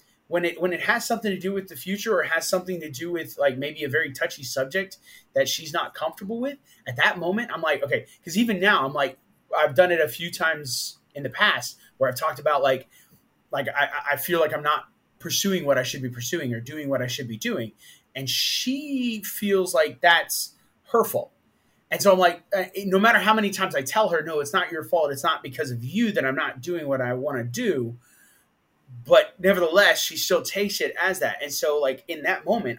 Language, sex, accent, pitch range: English, male, American, 135-190 Hz